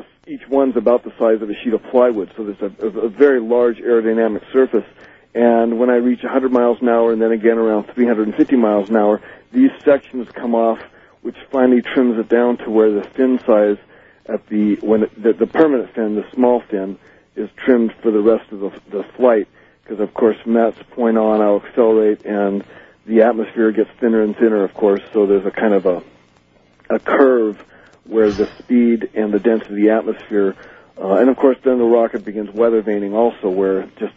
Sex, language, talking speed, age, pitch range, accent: male, English, 205 wpm, 50-69, 105-125 Hz, American